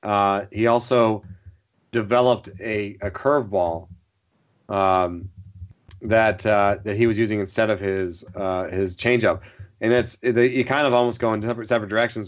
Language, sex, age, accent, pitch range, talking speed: English, male, 30-49, American, 100-115 Hz, 155 wpm